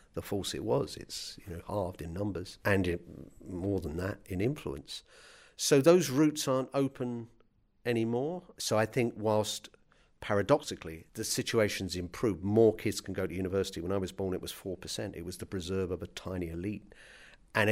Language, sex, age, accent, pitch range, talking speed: English, male, 50-69, British, 90-110 Hz, 170 wpm